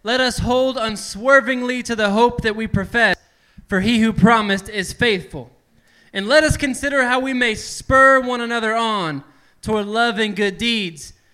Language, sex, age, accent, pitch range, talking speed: English, male, 20-39, American, 175-235 Hz, 165 wpm